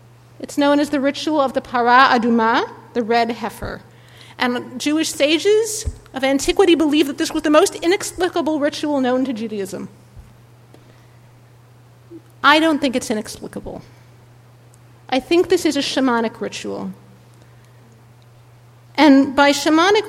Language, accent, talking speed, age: English, American, 130 wpm, 50-69